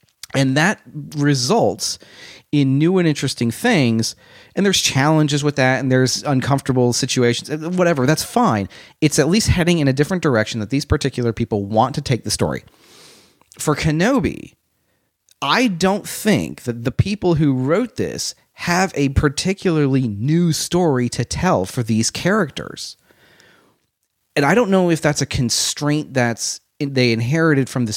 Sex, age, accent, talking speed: male, 30-49, American, 150 wpm